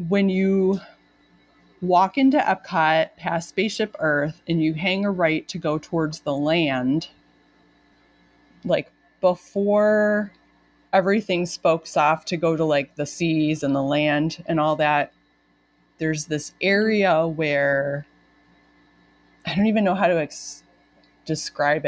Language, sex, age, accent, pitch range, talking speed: English, female, 30-49, American, 150-190 Hz, 125 wpm